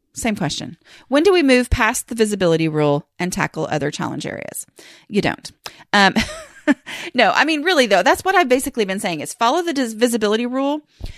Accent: American